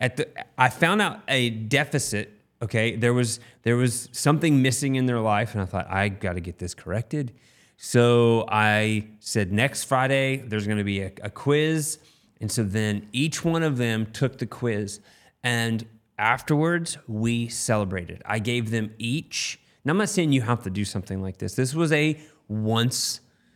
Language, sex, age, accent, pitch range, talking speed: English, male, 30-49, American, 105-130 Hz, 170 wpm